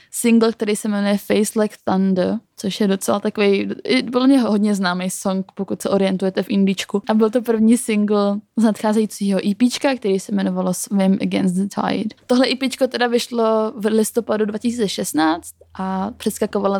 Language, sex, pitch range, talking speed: Czech, female, 190-225 Hz, 160 wpm